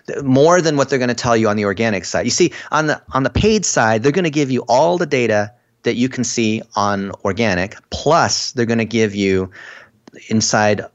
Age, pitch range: 30-49, 100-125 Hz